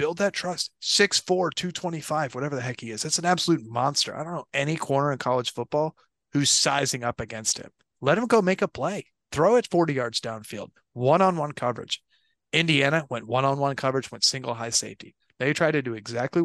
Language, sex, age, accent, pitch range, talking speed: English, male, 30-49, American, 120-155 Hz, 195 wpm